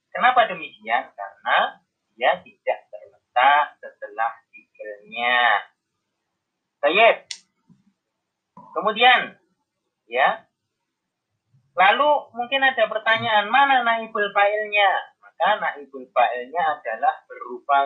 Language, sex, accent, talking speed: Indonesian, male, native, 75 wpm